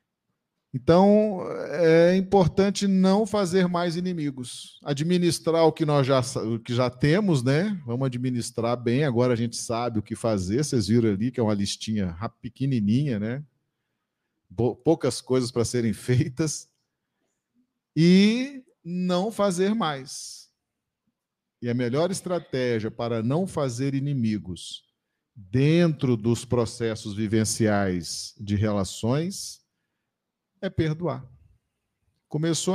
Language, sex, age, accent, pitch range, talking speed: Portuguese, male, 40-59, Brazilian, 110-160 Hz, 115 wpm